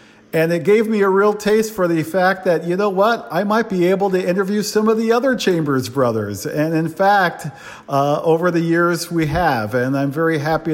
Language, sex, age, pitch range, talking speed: English, male, 50-69, 150-180 Hz, 220 wpm